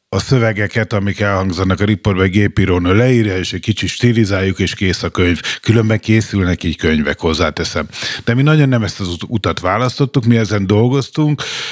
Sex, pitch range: male, 100-120 Hz